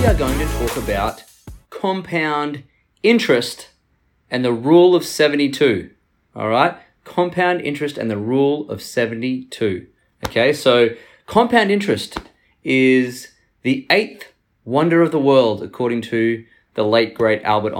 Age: 20-39